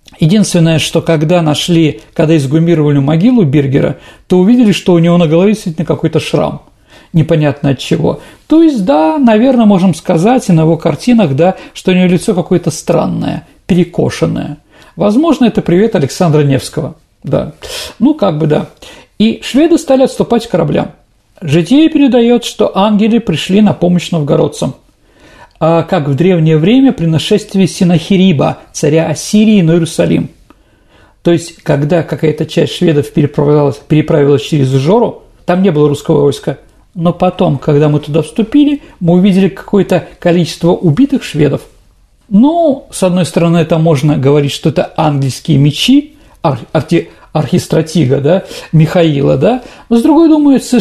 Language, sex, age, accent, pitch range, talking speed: Russian, male, 40-59, native, 155-215 Hz, 145 wpm